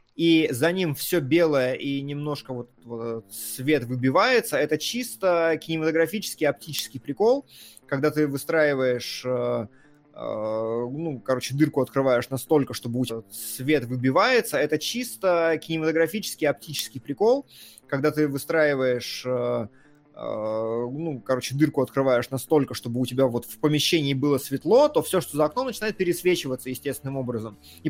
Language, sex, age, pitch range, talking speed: Russian, male, 20-39, 125-160 Hz, 130 wpm